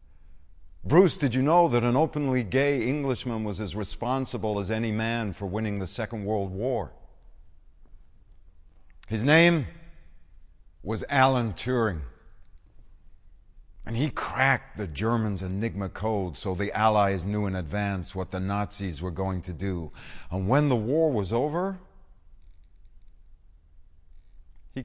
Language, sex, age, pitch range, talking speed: English, male, 50-69, 80-110 Hz, 130 wpm